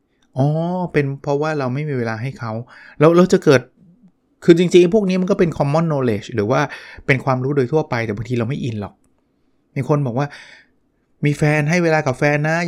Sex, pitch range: male, 120-145 Hz